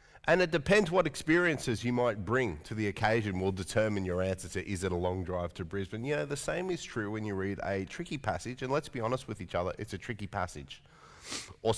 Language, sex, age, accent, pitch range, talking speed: English, male, 30-49, Australian, 95-120 Hz, 240 wpm